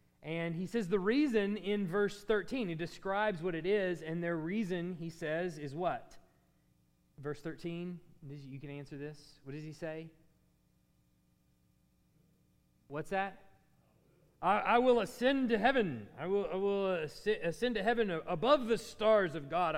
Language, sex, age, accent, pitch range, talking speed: English, male, 40-59, American, 135-195 Hz, 150 wpm